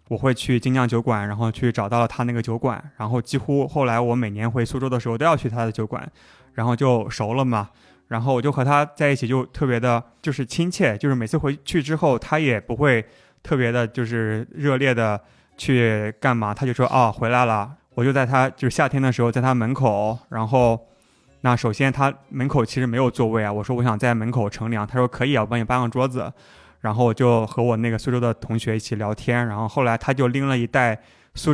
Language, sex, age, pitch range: Chinese, male, 20-39, 115-135 Hz